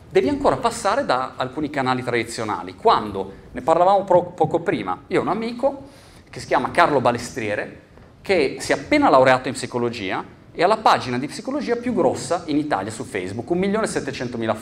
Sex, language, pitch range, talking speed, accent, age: male, Italian, 130-195 Hz, 170 wpm, native, 30-49